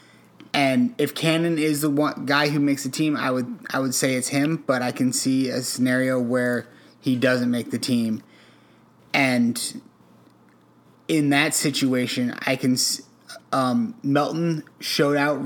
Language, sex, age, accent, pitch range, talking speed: English, male, 30-49, American, 125-150 Hz, 155 wpm